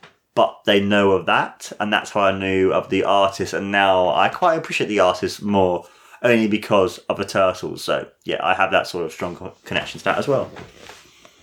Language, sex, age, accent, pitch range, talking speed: English, male, 20-39, British, 105-125 Hz, 205 wpm